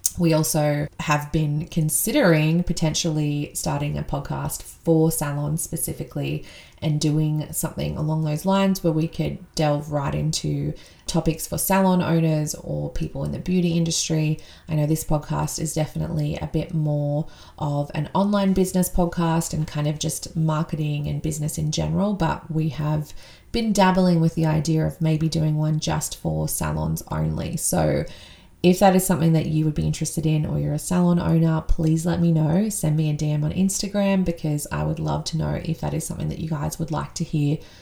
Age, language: 20-39, English